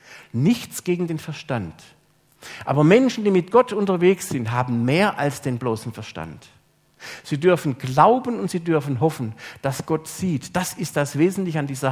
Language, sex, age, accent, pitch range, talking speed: German, male, 50-69, German, 115-170 Hz, 165 wpm